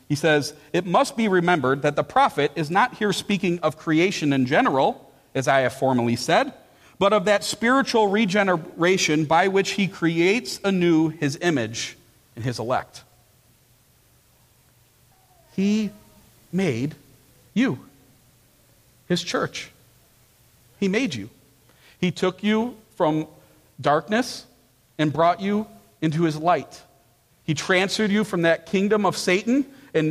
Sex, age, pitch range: male, 40-59, 130-205 Hz